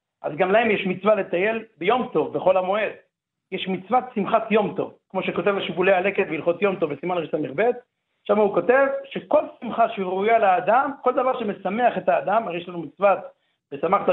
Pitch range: 180-240 Hz